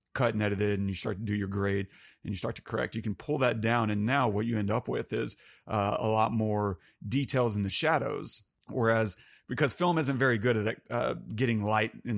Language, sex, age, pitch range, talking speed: English, male, 30-49, 105-120 Hz, 225 wpm